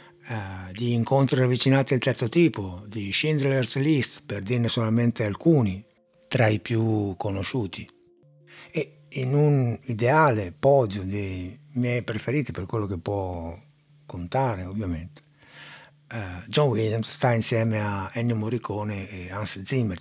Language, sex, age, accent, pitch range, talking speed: Italian, male, 60-79, native, 105-135 Hz, 125 wpm